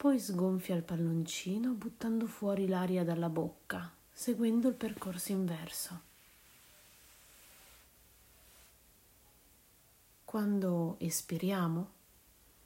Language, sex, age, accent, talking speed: Italian, female, 40-59, native, 70 wpm